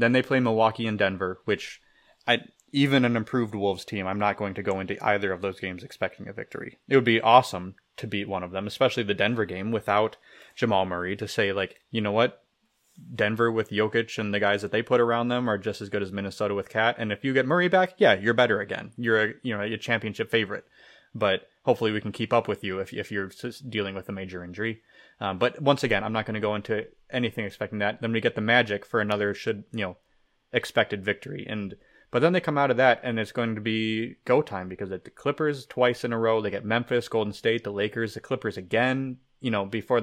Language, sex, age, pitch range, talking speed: English, male, 20-39, 105-125 Hz, 235 wpm